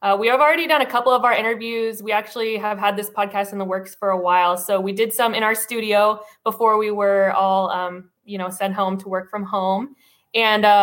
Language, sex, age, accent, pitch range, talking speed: English, female, 20-39, American, 200-240 Hz, 240 wpm